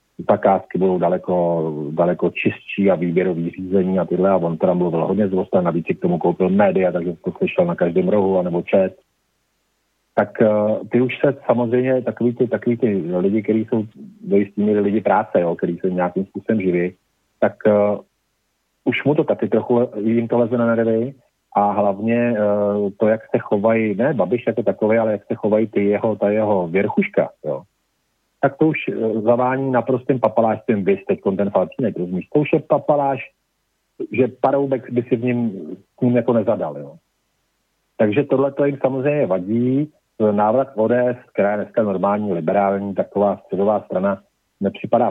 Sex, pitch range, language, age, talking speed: male, 100-120 Hz, Slovak, 40-59, 170 wpm